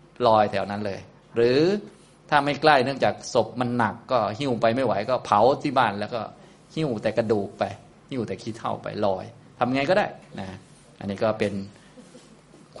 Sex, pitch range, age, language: male, 105-130 Hz, 20-39, Thai